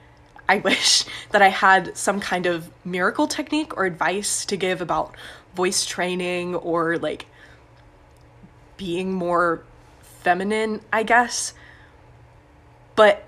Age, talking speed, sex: 20-39, 115 wpm, female